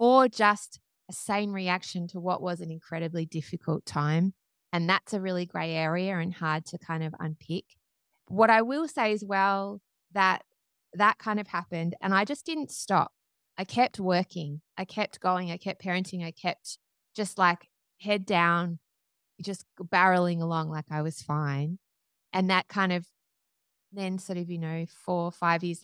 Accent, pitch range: Australian, 160-185 Hz